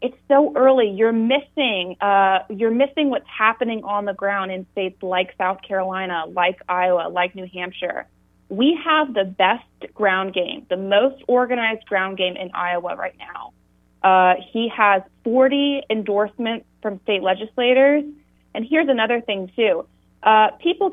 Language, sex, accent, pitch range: English, female, American, 185-230 Hz